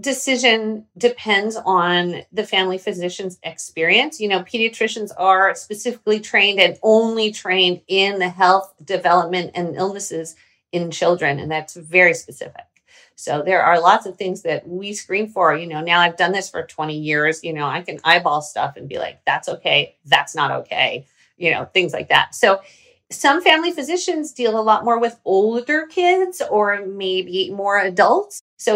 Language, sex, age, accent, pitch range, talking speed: English, female, 40-59, American, 180-245 Hz, 170 wpm